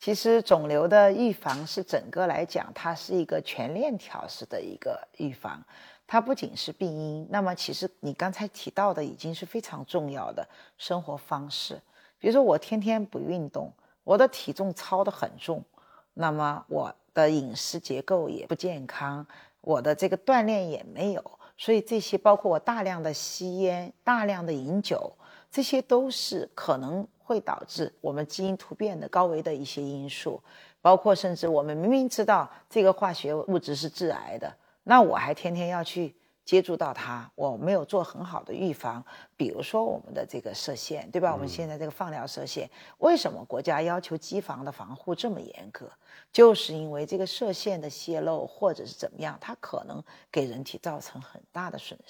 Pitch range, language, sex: 155-210 Hz, Chinese, female